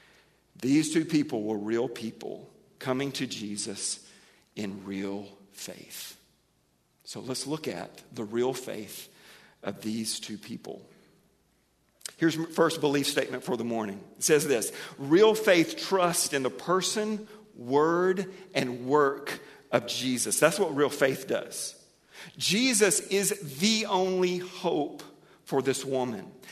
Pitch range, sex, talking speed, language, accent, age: 130-180 Hz, male, 130 wpm, English, American, 50-69